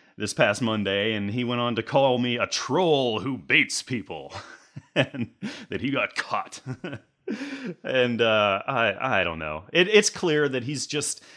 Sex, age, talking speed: male, 30-49, 170 wpm